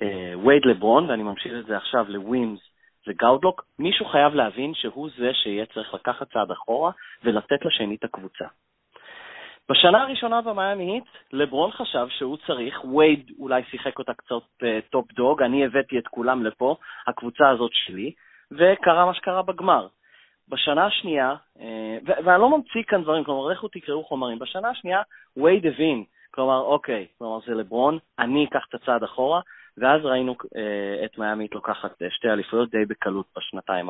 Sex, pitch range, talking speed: male, 115-165 Hz, 150 wpm